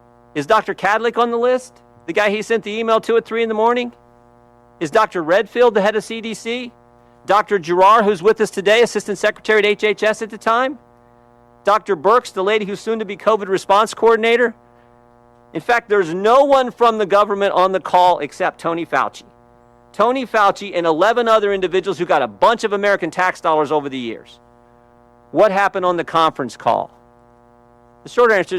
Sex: male